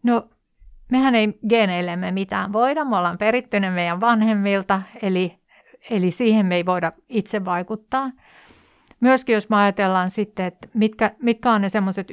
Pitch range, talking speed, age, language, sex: 185-220 Hz, 140 wpm, 50-69, Finnish, female